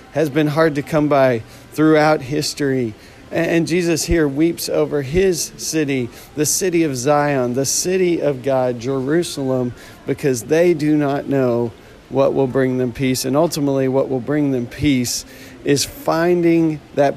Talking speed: 155 wpm